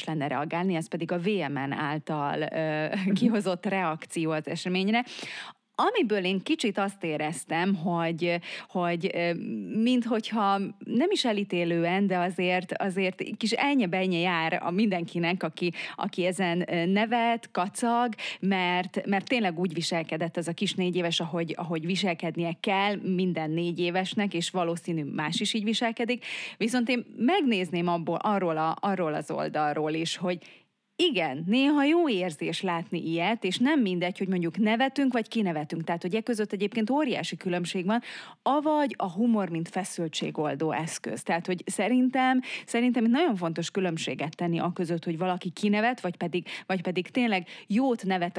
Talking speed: 150 wpm